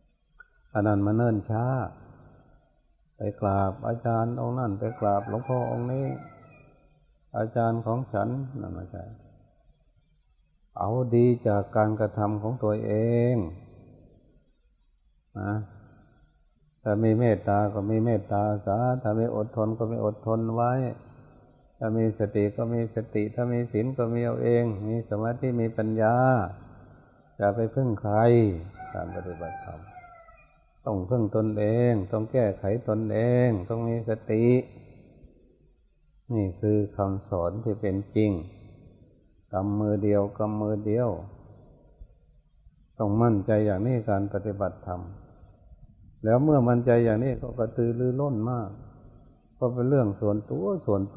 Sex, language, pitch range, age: male, Thai, 100-120 Hz, 60-79